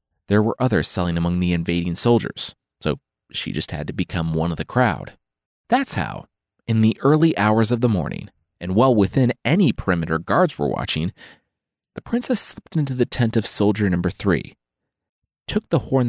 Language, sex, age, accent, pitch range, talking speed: English, male, 30-49, American, 85-130 Hz, 180 wpm